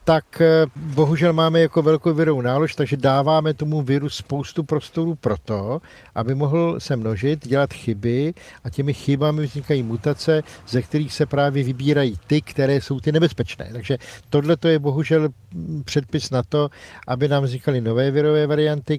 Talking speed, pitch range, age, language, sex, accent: 155 wpm, 125-145 Hz, 50-69, Czech, male, native